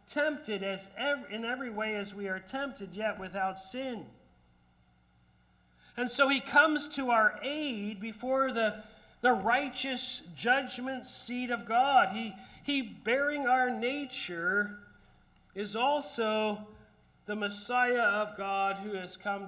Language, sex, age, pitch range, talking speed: English, male, 40-59, 150-245 Hz, 130 wpm